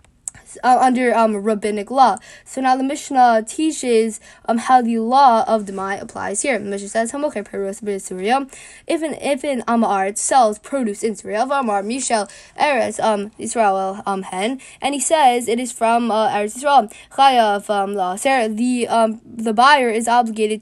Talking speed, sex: 155 wpm, female